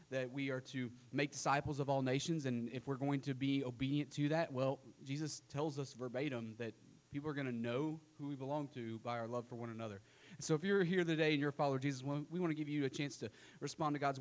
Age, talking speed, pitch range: 30-49, 260 wpm, 125-150 Hz